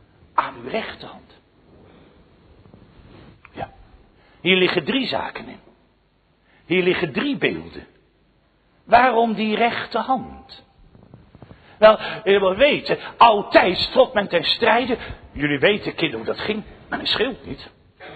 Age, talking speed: 60-79, 115 wpm